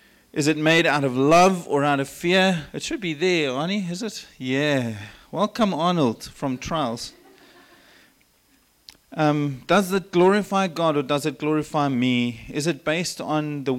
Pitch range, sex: 140-185 Hz, male